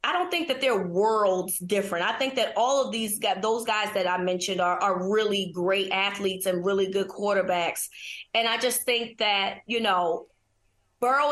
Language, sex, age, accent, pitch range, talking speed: English, female, 20-39, American, 185-225 Hz, 190 wpm